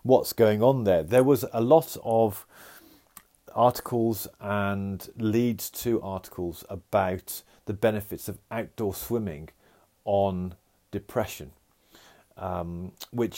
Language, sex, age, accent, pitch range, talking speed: English, male, 40-59, British, 90-110 Hz, 110 wpm